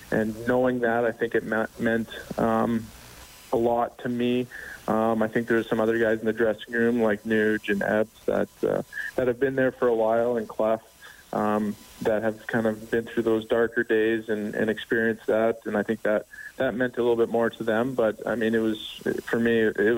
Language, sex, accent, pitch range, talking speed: English, male, American, 105-115 Hz, 215 wpm